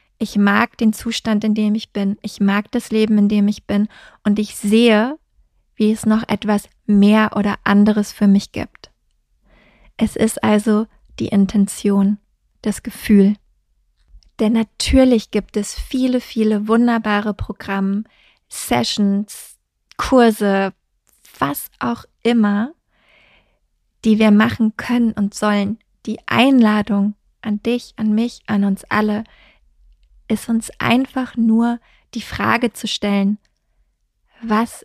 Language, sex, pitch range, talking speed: German, female, 200-225 Hz, 125 wpm